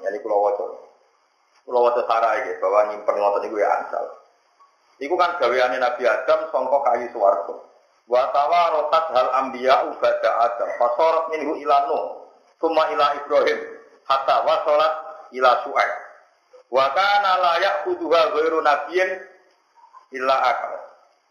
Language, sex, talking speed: Indonesian, male, 120 wpm